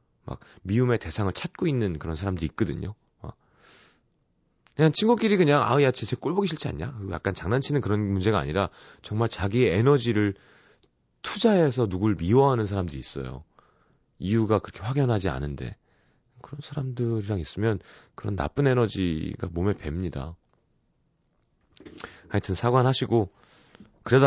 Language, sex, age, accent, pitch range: Korean, male, 30-49, native, 95-125 Hz